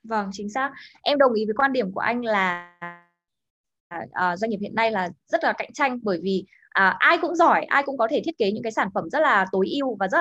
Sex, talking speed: female, 245 wpm